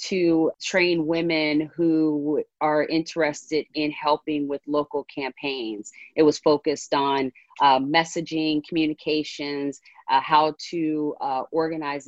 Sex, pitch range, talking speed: female, 145-160 Hz, 115 wpm